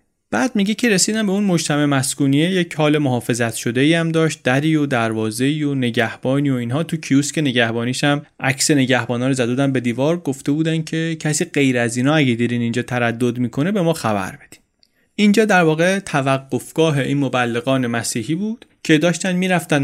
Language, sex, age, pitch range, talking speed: Persian, male, 30-49, 120-160 Hz, 180 wpm